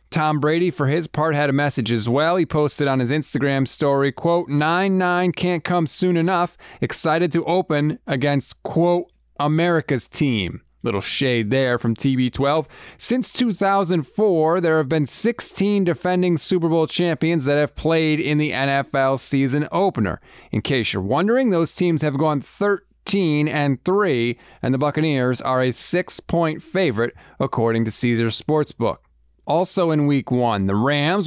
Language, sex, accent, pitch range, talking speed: English, male, American, 130-175 Hz, 150 wpm